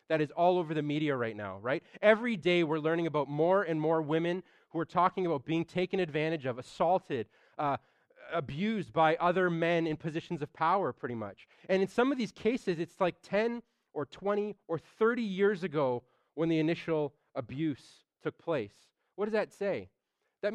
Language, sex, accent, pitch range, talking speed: English, male, American, 150-190 Hz, 185 wpm